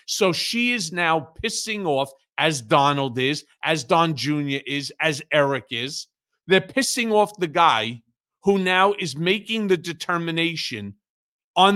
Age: 40-59